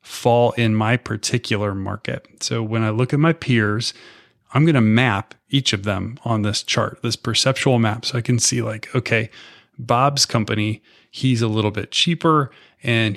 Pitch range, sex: 110-135 Hz, male